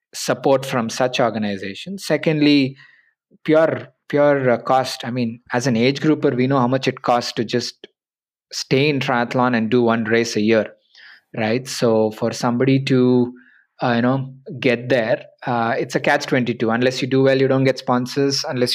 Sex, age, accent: male, 20-39, Indian